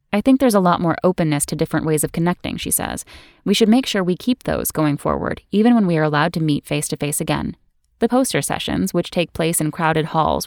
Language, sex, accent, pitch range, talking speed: English, female, American, 155-195 Hz, 235 wpm